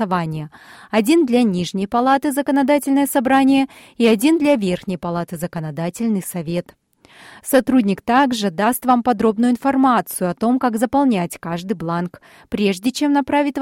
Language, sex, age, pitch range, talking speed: Russian, female, 30-49, 185-255 Hz, 130 wpm